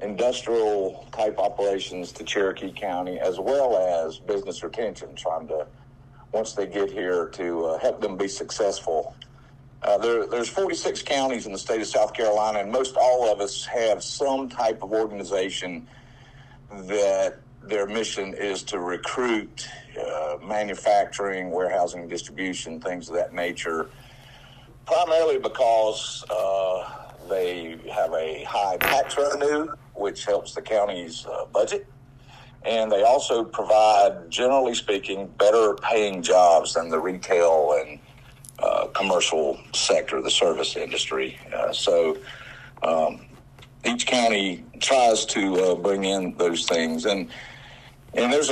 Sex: male